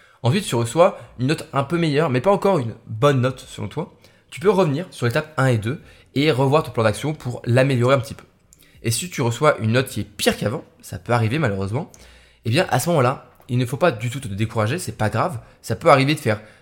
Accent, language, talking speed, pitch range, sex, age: French, French, 255 wpm, 110-135 Hz, male, 20-39